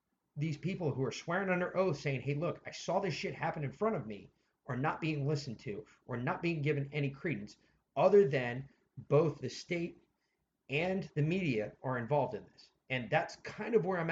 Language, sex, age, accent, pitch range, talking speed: English, male, 40-59, American, 125-160 Hz, 205 wpm